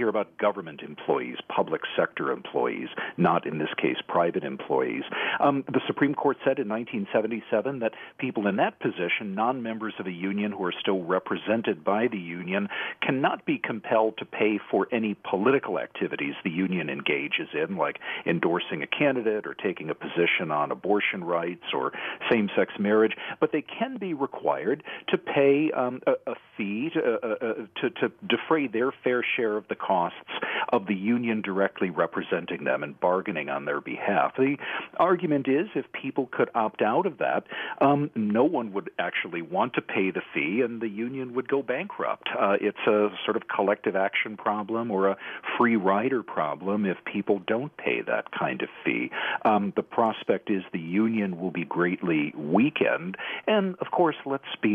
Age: 50-69